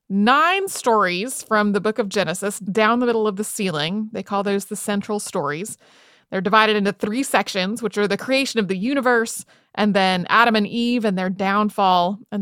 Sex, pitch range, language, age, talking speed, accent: female, 205-260 Hz, English, 30-49, 195 wpm, American